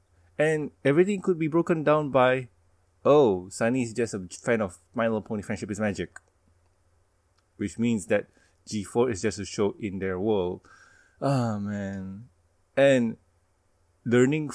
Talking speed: 150 wpm